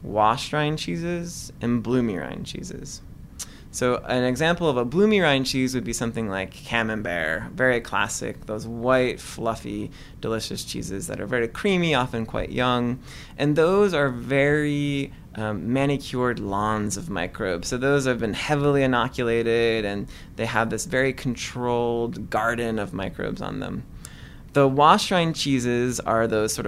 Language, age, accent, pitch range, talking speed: English, 20-39, American, 115-140 Hz, 150 wpm